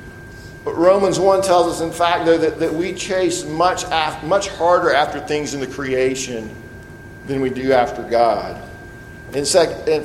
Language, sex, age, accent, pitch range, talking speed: English, male, 40-59, American, 135-175 Hz, 175 wpm